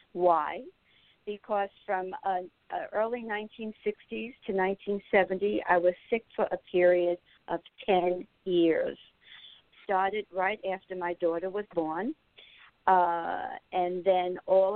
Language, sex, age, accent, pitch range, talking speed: English, female, 60-79, American, 175-200 Hz, 120 wpm